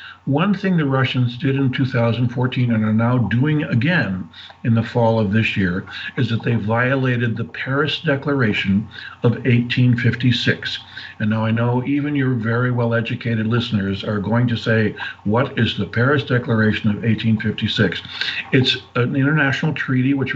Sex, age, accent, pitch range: male, 60-79, American, 110-135 Hz